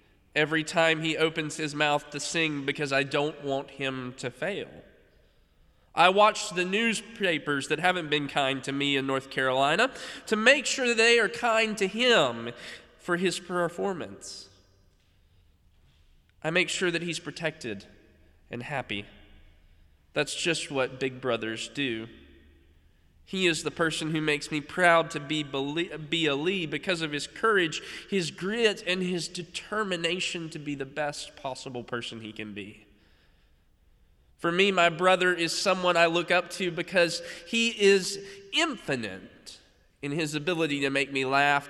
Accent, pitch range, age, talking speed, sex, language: American, 115-175 Hz, 20-39, 150 wpm, male, English